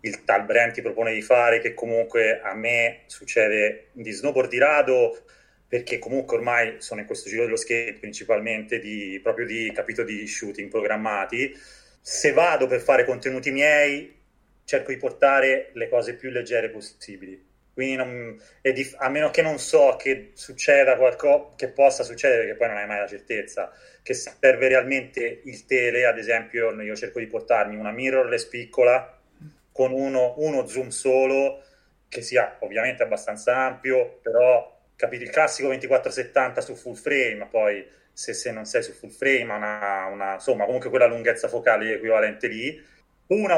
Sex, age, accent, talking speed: male, 30-49, native, 165 wpm